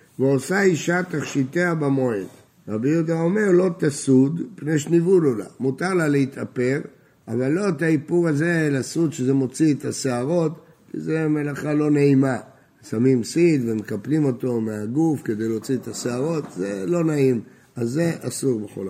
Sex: male